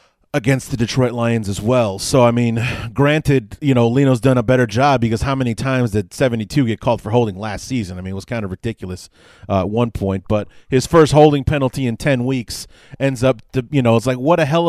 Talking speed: 235 wpm